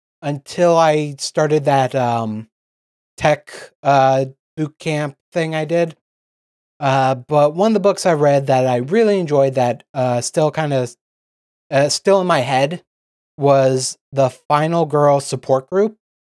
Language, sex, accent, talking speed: English, male, American, 145 wpm